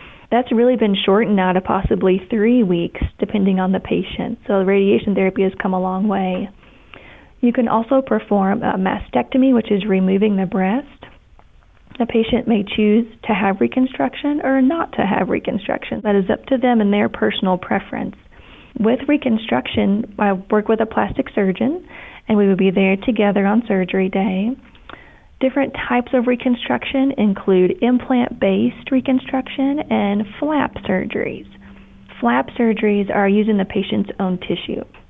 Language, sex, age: English, female, 30-49